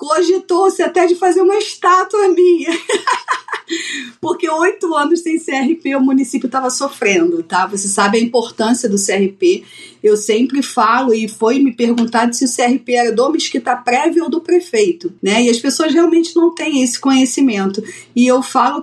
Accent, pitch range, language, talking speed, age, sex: Brazilian, 225-295 Hz, Portuguese, 165 wpm, 40-59, female